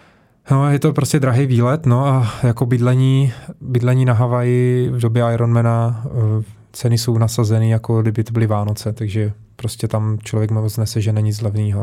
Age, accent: 20-39, native